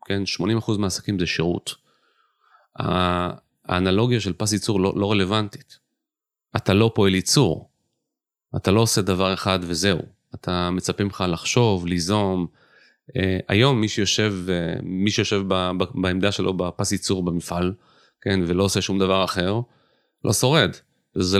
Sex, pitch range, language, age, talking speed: male, 90-115 Hz, Hebrew, 30-49, 125 wpm